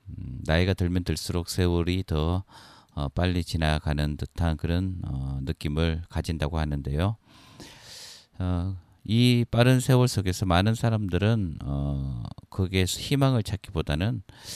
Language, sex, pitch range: Korean, male, 80-100 Hz